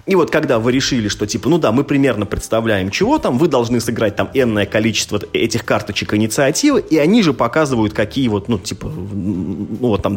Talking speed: 200 wpm